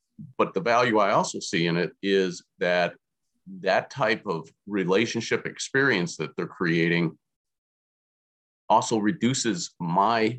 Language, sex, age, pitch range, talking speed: English, male, 40-59, 90-115 Hz, 120 wpm